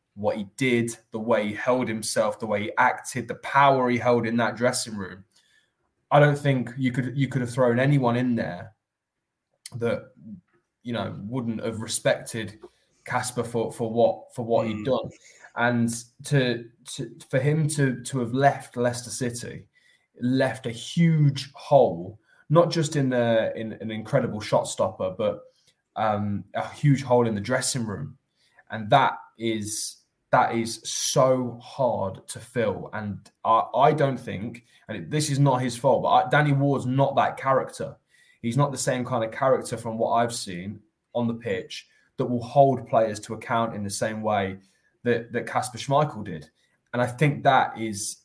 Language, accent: English, British